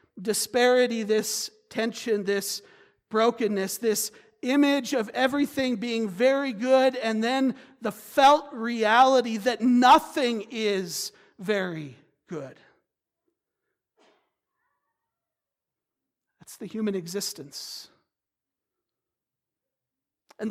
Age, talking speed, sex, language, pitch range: 50-69, 80 wpm, male, English, 190-250 Hz